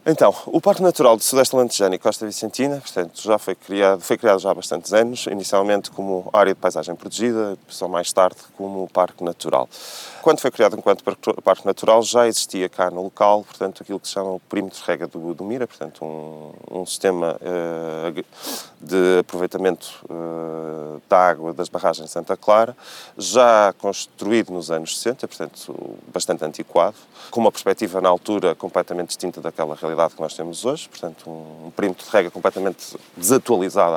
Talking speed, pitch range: 175 wpm, 85-110 Hz